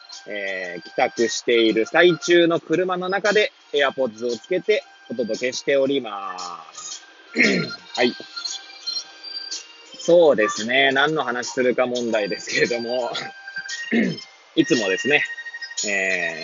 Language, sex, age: Japanese, male, 20-39